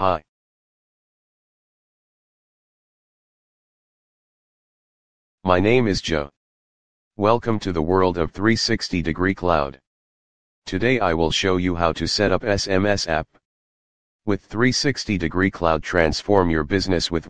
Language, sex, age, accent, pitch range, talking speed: English, male, 40-59, American, 85-105 Hz, 110 wpm